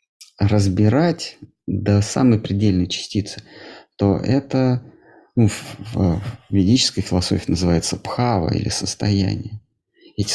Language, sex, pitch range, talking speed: Russian, male, 95-125 Hz, 110 wpm